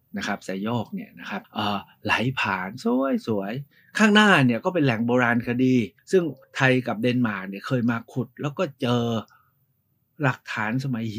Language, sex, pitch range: Thai, male, 115-140 Hz